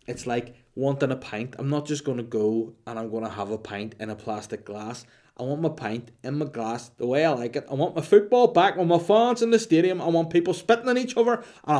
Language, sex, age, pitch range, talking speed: English, male, 20-39, 115-150 Hz, 270 wpm